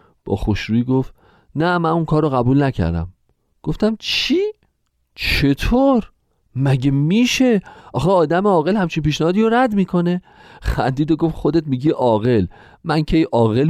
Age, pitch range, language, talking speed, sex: 40-59, 110-185 Hz, Persian, 140 wpm, male